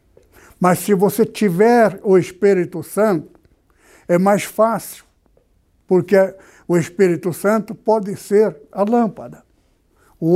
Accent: Brazilian